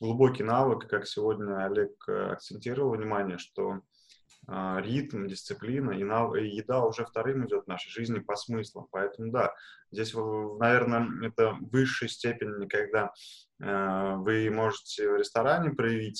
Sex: male